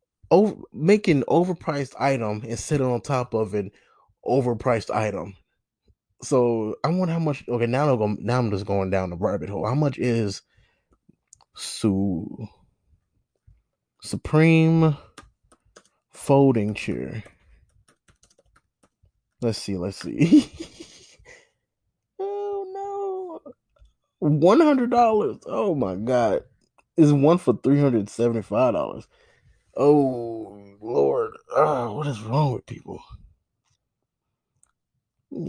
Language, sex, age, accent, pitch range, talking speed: English, male, 20-39, American, 105-160 Hz, 95 wpm